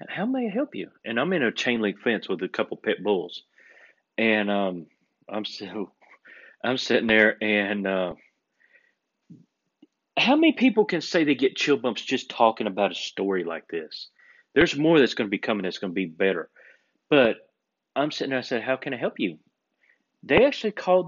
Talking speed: 195 wpm